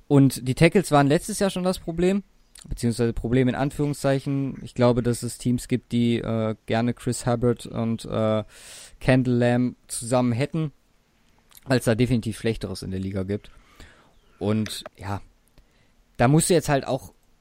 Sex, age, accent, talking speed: male, 20-39, German, 160 wpm